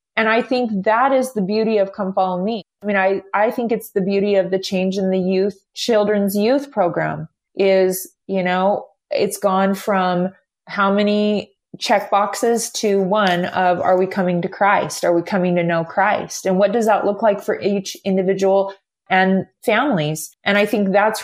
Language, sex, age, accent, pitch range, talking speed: English, female, 20-39, American, 190-215 Hz, 190 wpm